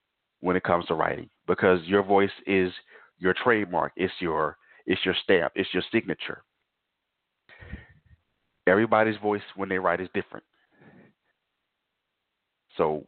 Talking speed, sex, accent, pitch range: 125 wpm, male, American, 95-110 Hz